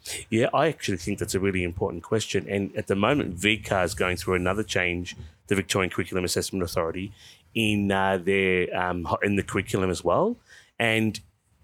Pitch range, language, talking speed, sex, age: 90-105 Hz, English, 175 wpm, male, 30-49